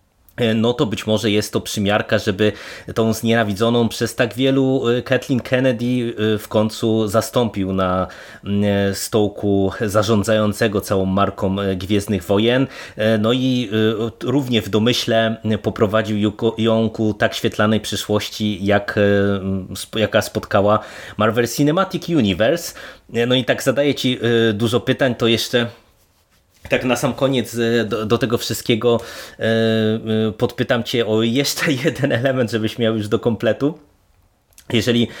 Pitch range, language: 105-120 Hz, Polish